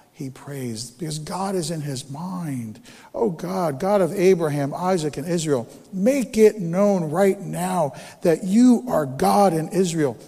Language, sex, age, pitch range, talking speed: English, male, 50-69, 130-205 Hz, 160 wpm